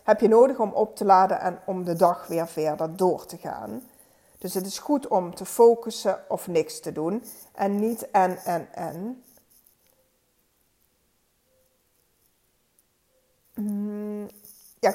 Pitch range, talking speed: 180-225 Hz, 135 wpm